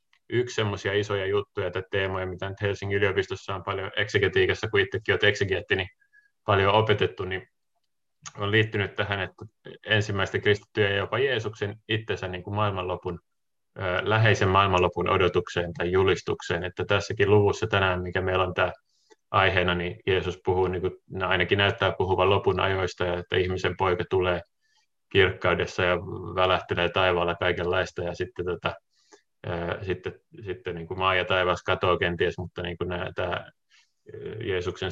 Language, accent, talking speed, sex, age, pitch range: Finnish, native, 140 wpm, male, 30-49, 90-105 Hz